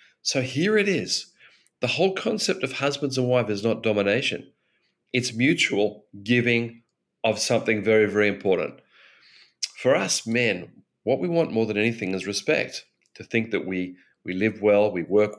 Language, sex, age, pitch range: English, male, 40-59, 100-125 Hz